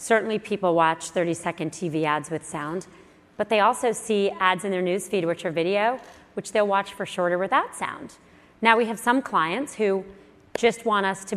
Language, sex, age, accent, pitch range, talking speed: English, female, 30-49, American, 175-215 Hz, 190 wpm